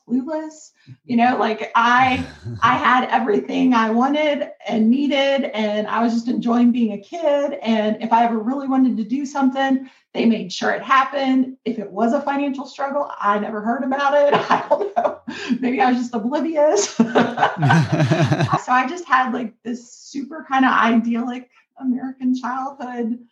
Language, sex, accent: English, female, American